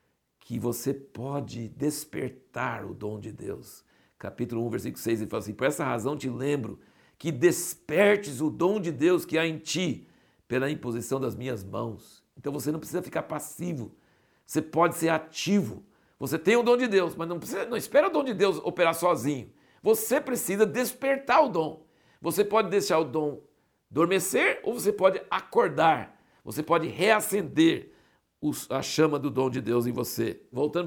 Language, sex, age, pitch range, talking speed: Portuguese, male, 60-79, 150-210 Hz, 175 wpm